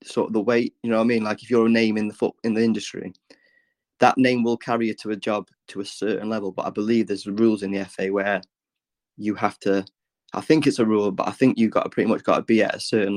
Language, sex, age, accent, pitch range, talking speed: English, male, 20-39, British, 100-115 Hz, 285 wpm